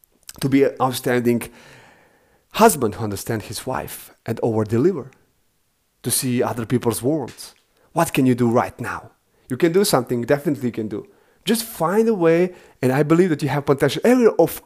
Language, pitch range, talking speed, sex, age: English, 120-155 Hz, 175 wpm, male, 30-49